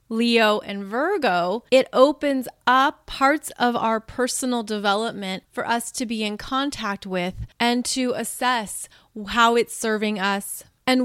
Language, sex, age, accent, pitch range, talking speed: English, female, 30-49, American, 210-265 Hz, 140 wpm